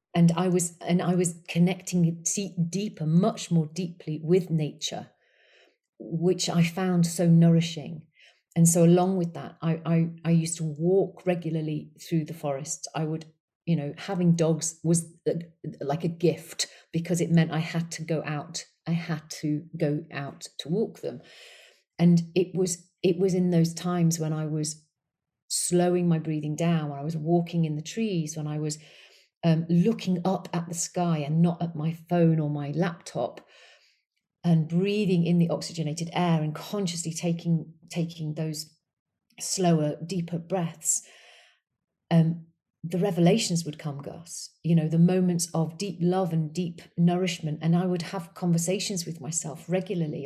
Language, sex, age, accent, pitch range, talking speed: English, female, 40-59, British, 160-180 Hz, 165 wpm